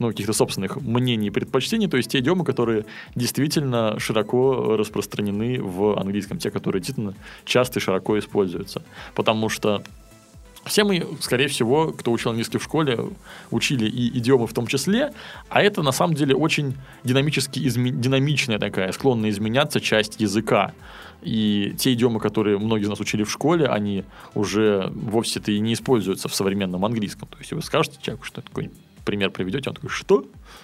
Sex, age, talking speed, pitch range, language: male, 20-39, 170 wpm, 100-135 Hz, Russian